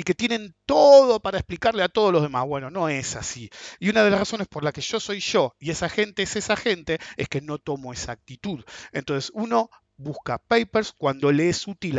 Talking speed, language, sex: 225 wpm, English, male